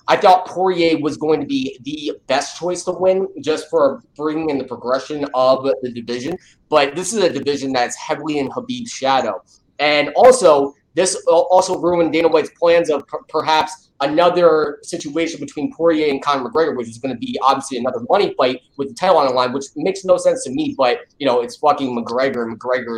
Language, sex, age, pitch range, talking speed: English, male, 20-39, 135-185 Hz, 200 wpm